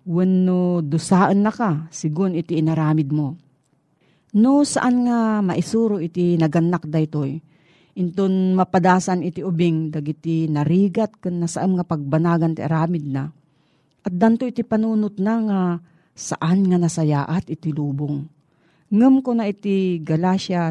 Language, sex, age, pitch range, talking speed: Filipino, female, 40-59, 155-200 Hz, 135 wpm